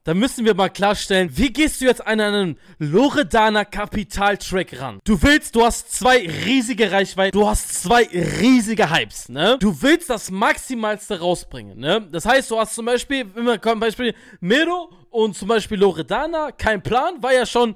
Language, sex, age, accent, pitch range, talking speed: English, male, 20-39, German, 200-260 Hz, 175 wpm